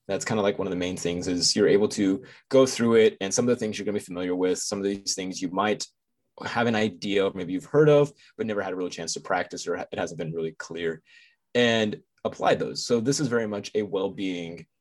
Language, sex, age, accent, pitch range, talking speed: English, male, 20-39, American, 95-125 Hz, 265 wpm